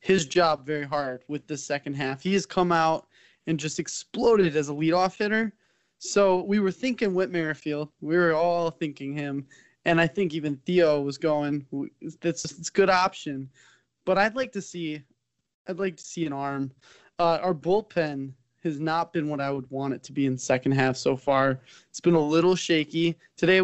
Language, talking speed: English, 195 wpm